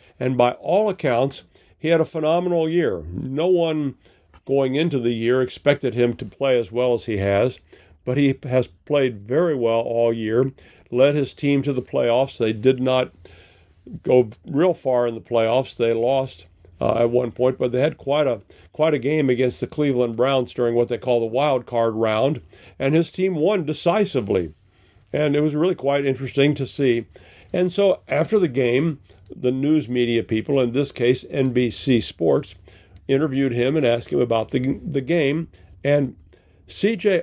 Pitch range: 115-145 Hz